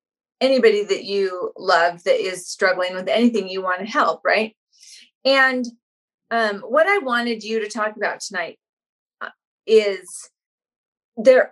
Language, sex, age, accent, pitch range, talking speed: English, female, 30-49, American, 185-235 Hz, 135 wpm